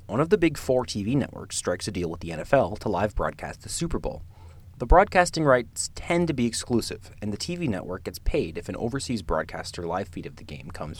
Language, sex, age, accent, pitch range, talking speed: English, male, 30-49, American, 85-125 Hz, 230 wpm